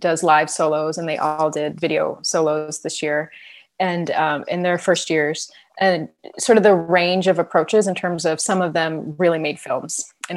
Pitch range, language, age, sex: 165-210 Hz, English, 20-39, female